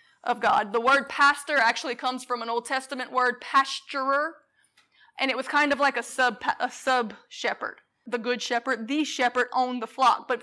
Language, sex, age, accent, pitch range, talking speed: English, female, 20-39, American, 235-275 Hz, 185 wpm